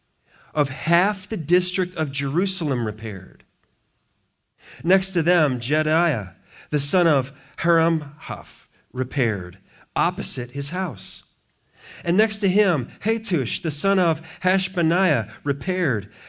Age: 40-59